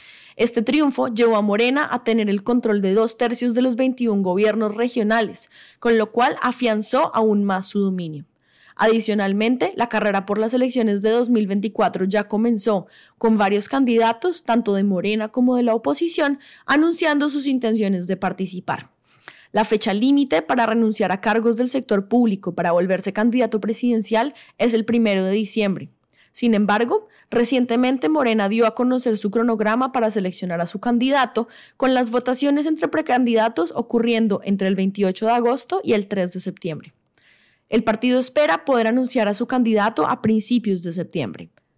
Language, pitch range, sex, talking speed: English, 205-245 Hz, female, 160 wpm